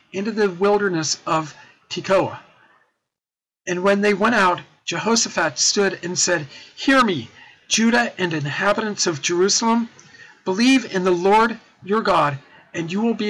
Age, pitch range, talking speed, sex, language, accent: 50-69, 160-210 Hz, 140 wpm, male, English, American